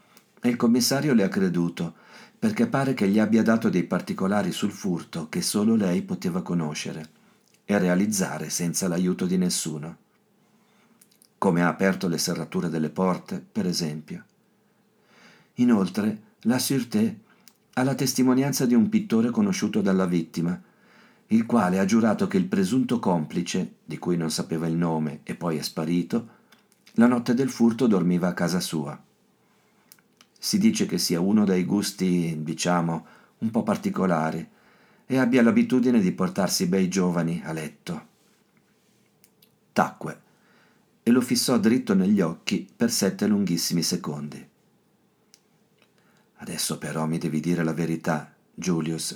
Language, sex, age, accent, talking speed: Italian, male, 50-69, native, 140 wpm